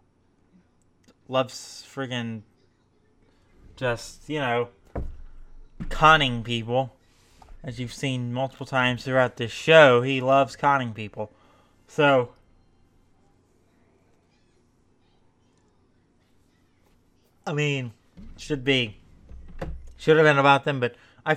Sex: male